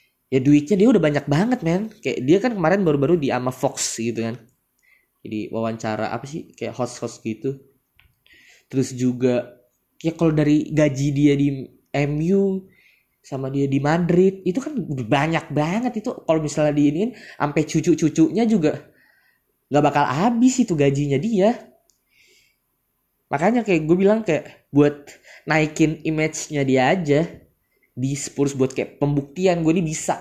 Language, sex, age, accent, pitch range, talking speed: Indonesian, male, 20-39, native, 135-180 Hz, 145 wpm